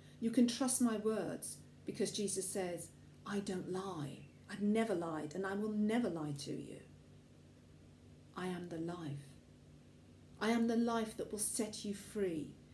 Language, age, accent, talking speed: English, 40-59, British, 160 wpm